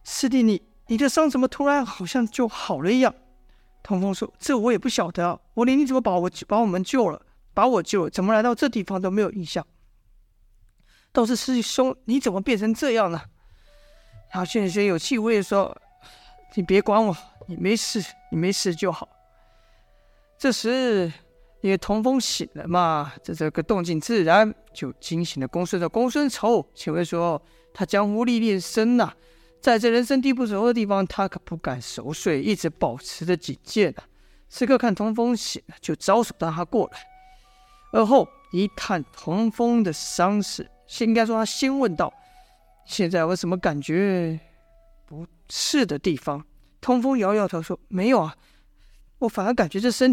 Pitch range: 165-240 Hz